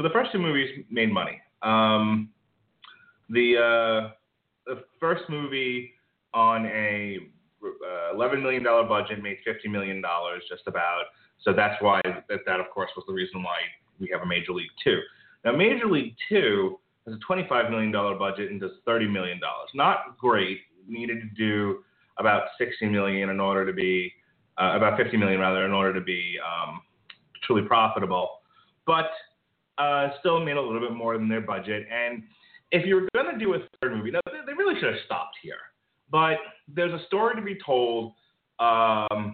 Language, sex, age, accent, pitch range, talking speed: English, male, 30-49, American, 100-145 Hz, 185 wpm